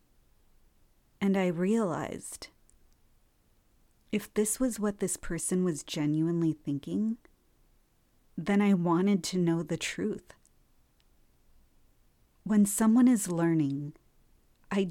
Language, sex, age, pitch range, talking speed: English, female, 30-49, 150-190 Hz, 95 wpm